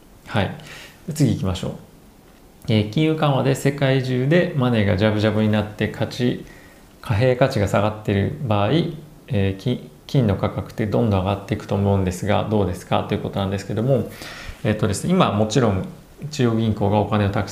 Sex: male